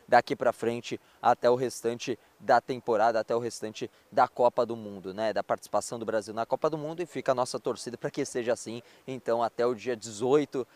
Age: 20-39